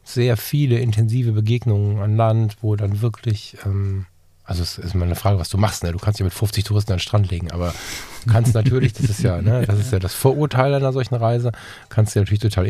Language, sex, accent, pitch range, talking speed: German, male, German, 105-130 Hz, 235 wpm